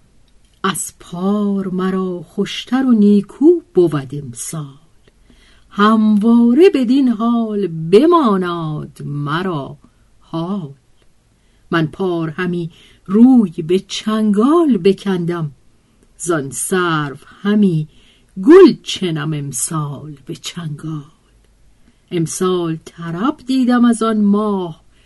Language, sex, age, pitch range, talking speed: Persian, female, 50-69, 145-205 Hz, 85 wpm